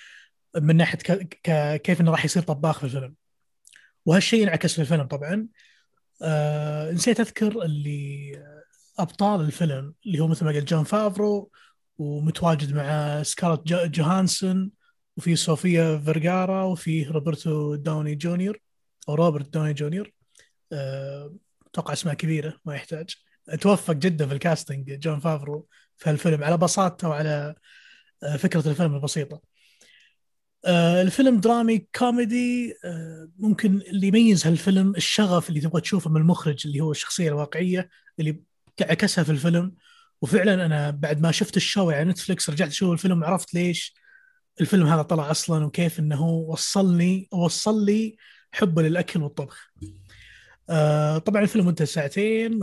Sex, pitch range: male, 150-190 Hz